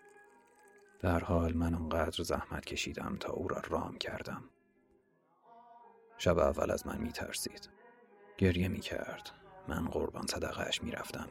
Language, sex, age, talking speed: Persian, male, 40-59, 125 wpm